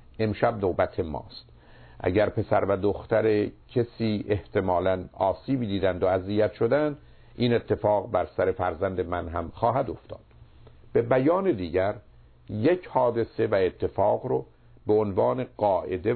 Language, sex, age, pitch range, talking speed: Persian, male, 50-69, 95-120 Hz, 125 wpm